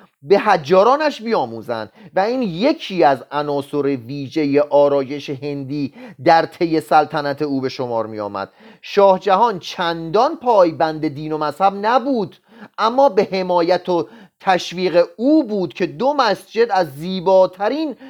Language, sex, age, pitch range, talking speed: Persian, male, 30-49, 160-235 Hz, 130 wpm